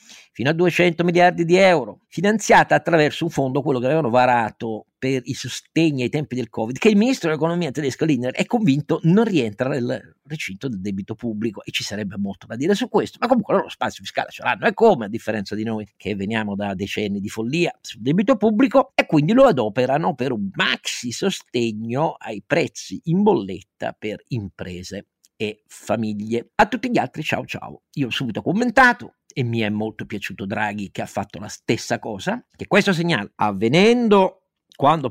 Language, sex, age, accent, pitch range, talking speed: Italian, male, 50-69, native, 110-170 Hz, 185 wpm